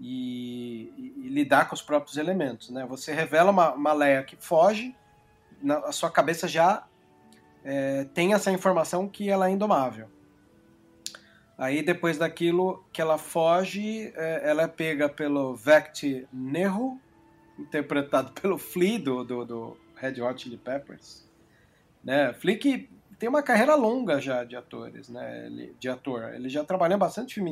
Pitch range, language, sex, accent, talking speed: 130-185 Hz, Portuguese, male, Brazilian, 155 wpm